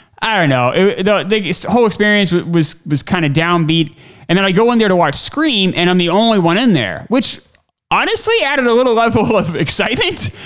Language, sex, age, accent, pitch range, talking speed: English, male, 30-49, American, 135-195 Hz, 200 wpm